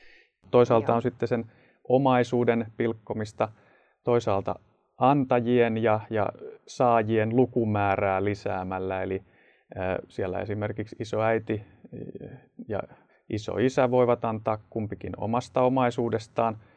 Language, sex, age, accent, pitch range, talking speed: Finnish, male, 30-49, native, 100-120 Hz, 95 wpm